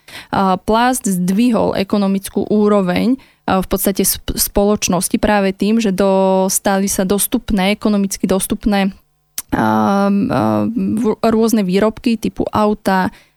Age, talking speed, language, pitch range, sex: 20-39, 85 wpm, Slovak, 195-225 Hz, female